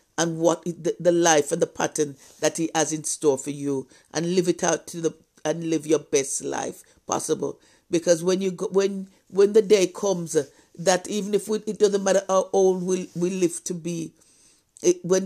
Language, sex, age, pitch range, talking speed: English, female, 50-69, 160-185 Hz, 190 wpm